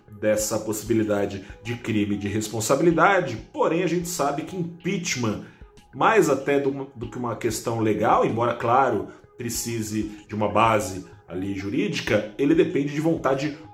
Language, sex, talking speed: Portuguese, male, 130 wpm